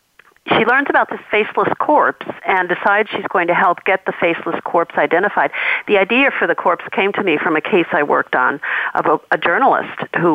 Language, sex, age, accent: English, female, 50-69, American